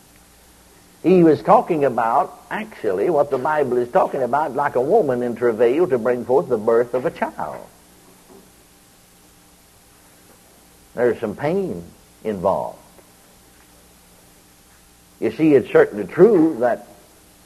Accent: American